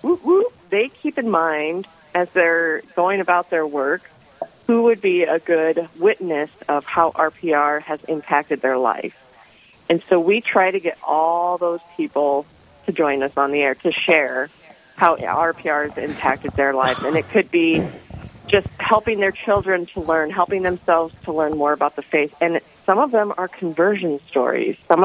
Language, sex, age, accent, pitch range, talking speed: English, female, 40-59, American, 150-185 Hz, 175 wpm